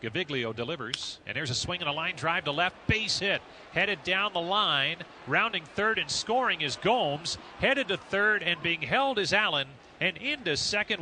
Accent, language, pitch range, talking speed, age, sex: American, English, 150-225 Hz, 190 wpm, 40-59, male